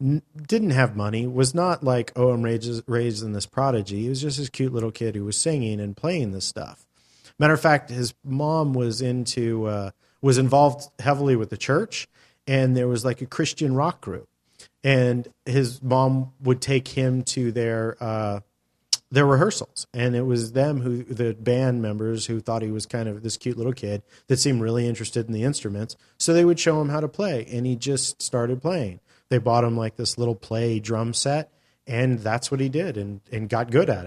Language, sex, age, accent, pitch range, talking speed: English, male, 40-59, American, 105-130 Hz, 205 wpm